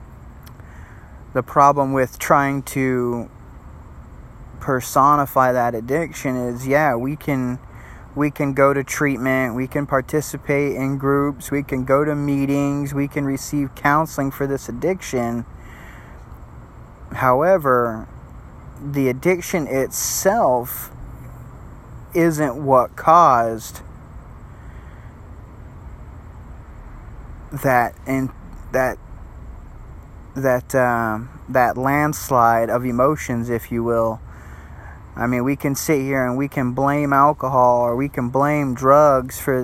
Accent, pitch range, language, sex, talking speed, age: American, 120-145 Hz, English, male, 105 wpm, 20-39